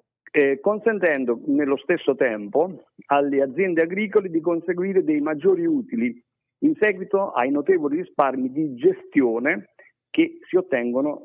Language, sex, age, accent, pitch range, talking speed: Italian, male, 50-69, native, 130-200 Hz, 115 wpm